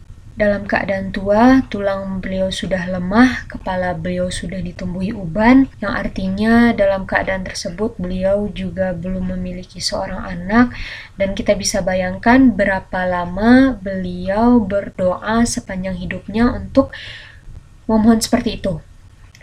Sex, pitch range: female, 195-230 Hz